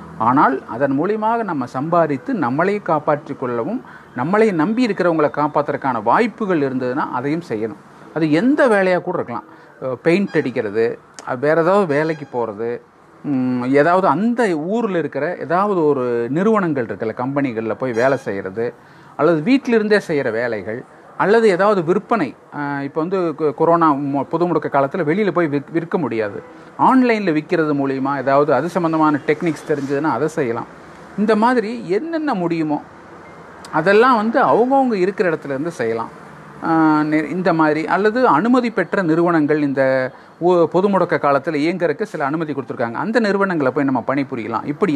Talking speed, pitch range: 130 wpm, 145-200 Hz